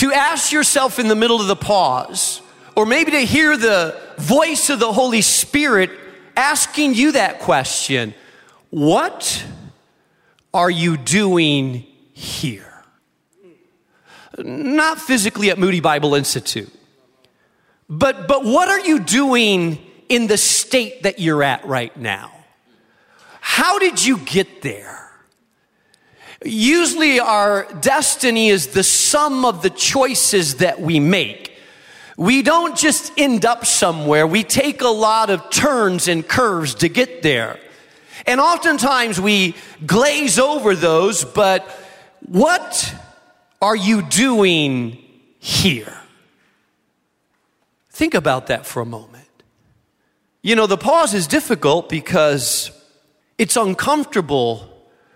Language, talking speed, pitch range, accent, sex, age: English, 120 wpm, 170-270 Hz, American, male, 40-59